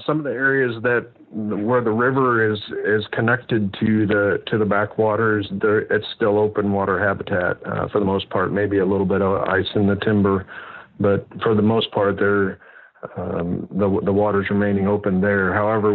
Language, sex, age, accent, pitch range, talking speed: English, male, 40-59, American, 95-110 Hz, 185 wpm